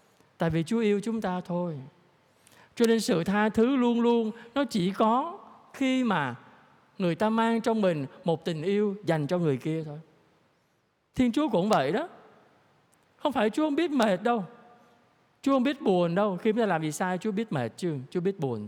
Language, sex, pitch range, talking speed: Vietnamese, male, 165-230 Hz, 200 wpm